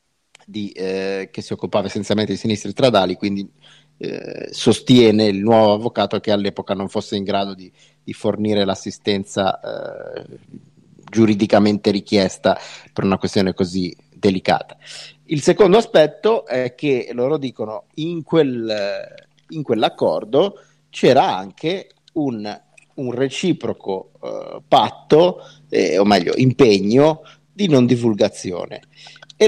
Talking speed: 120 wpm